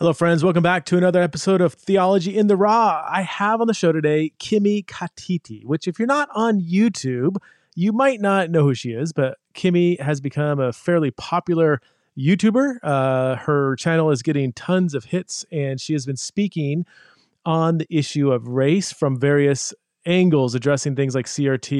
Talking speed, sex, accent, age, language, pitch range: 180 wpm, male, American, 30-49, English, 135-175 Hz